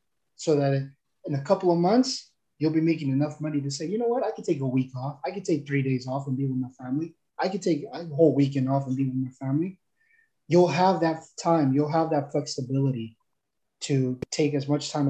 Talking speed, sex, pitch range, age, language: 235 wpm, male, 135-180 Hz, 20-39, English